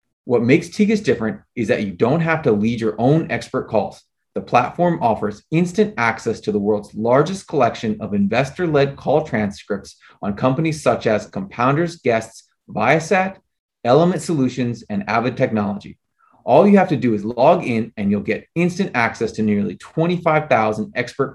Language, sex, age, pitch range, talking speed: English, male, 30-49, 115-175 Hz, 165 wpm